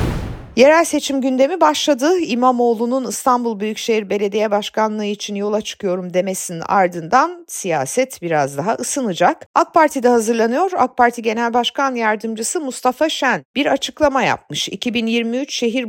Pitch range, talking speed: 195-275 Hz, 125 wpm